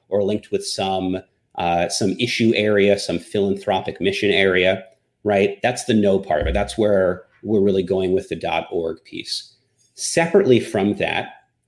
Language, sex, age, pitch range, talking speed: English, male, 30-49, 100-120 Hz, 155 wpm